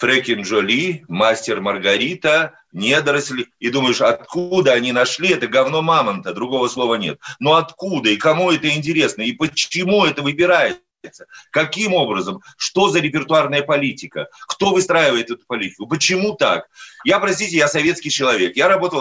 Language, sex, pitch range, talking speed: Russian, male, 125-180 Hz, 140 wpm